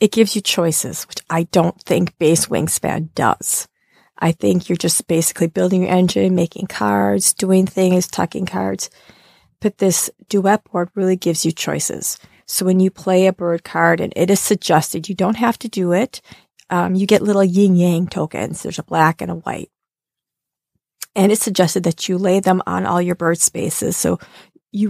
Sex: female